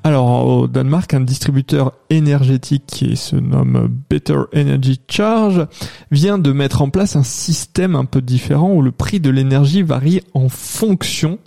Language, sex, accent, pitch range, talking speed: French, male, French, 135-160 Hz, 155 wpm